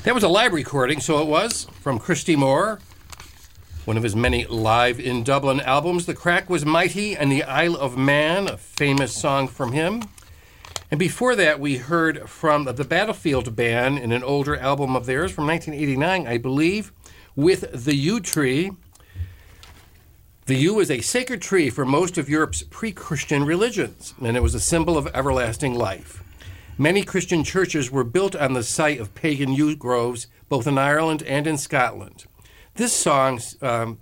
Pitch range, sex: 120-160 Hz, male